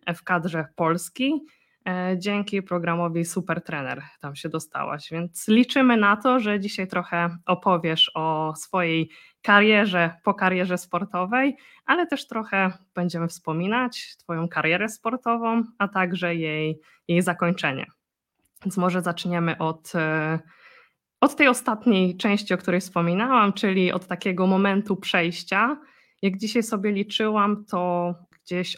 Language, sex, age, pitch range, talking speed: Polish, female, 20-39, 170-215 Hz, 125 wpm